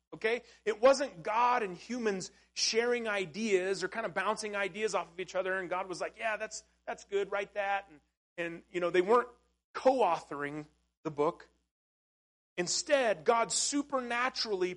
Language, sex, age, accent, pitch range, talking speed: English, male, 40-59, American, 175-245 Hz, 160 wpm